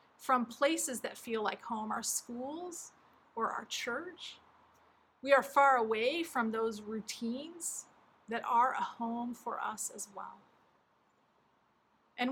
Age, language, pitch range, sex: 40-59, English, 230-280 Hz, female